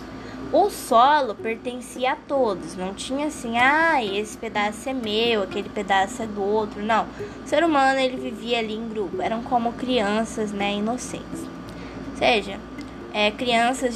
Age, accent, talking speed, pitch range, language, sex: 10-29, Brazilian, 150 wpm, 210-265 Hz, Portuguese, female